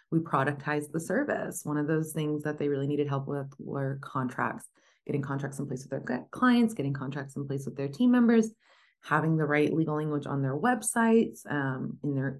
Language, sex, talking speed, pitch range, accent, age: English, female, 205 wpm, 135-160 Hz, American, 20-39